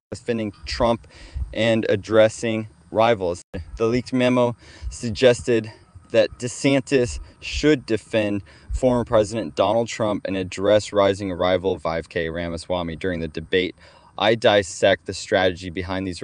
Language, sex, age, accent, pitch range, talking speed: English, male, 20-39, American, 90-120 Hz, 120 wpm